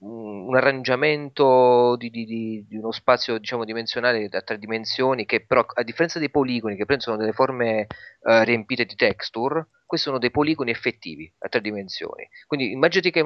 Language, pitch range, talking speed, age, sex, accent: Italian, 100-140 Hz, 170 wpm, 30-49, male, native